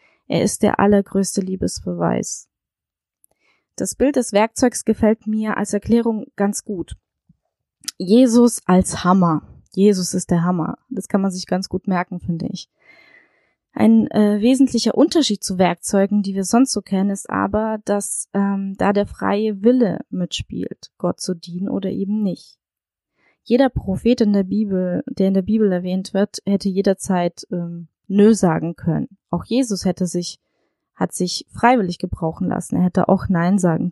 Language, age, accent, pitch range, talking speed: German, 20-39, German, 180-215 Hz, 155 wpm